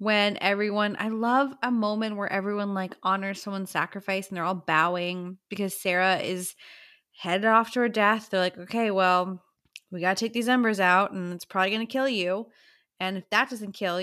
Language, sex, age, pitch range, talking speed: English, female, 20-39, 190-240 Hz, 195 wpm